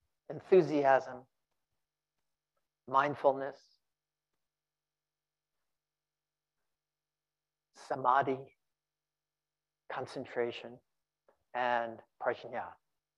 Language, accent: English, American